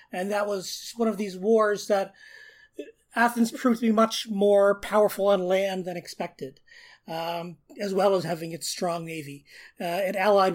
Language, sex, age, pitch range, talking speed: English, male, 30-49, 185-230 Hz, 170 wpm